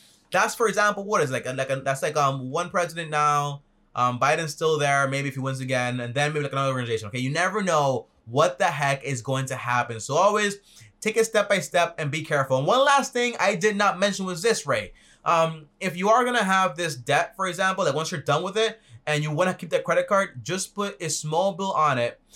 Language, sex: English, male